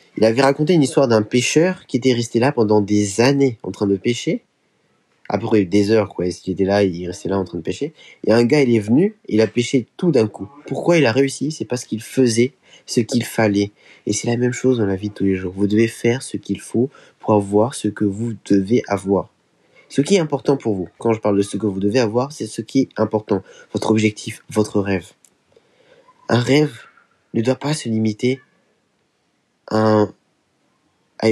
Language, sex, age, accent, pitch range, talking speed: French, male, 20-39, French, 105-135 Hz, 215 wpm